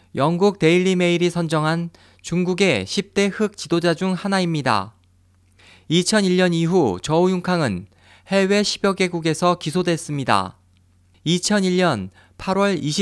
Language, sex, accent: Korean, male, native